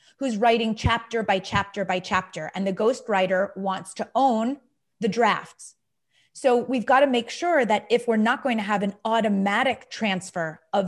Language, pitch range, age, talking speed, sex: English, 195-240 Hz, 30-49, 175 wpm, female